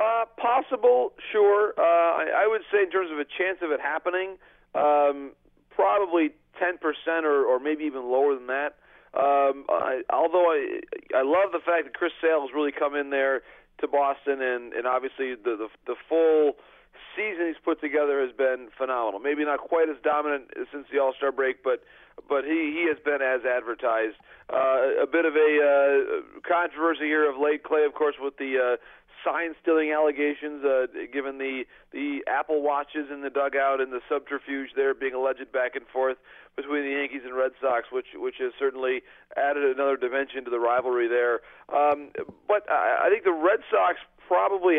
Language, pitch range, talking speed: English, 135-170 Hz, 185 wpm